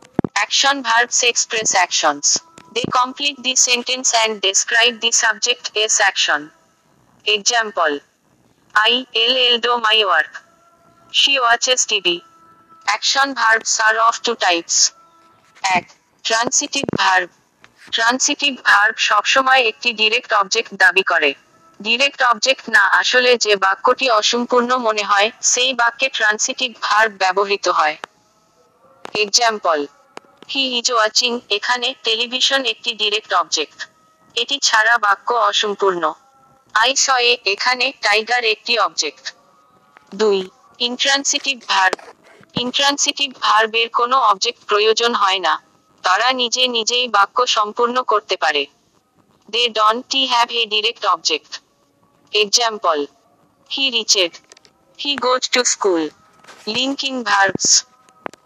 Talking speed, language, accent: 50 wpm, Bengali, native